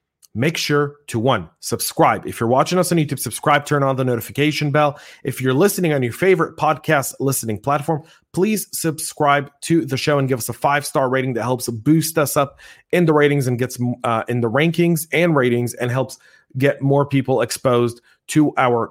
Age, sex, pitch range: 30-49, male, 120-145 Hz